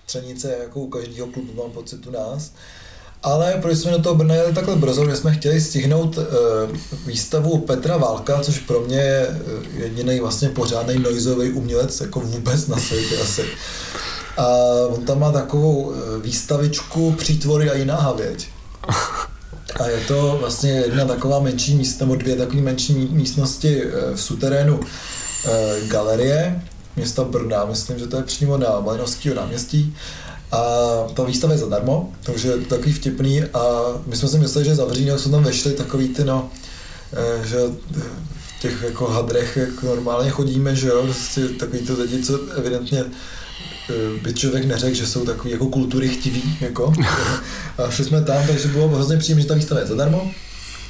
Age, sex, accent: 20-39, male, native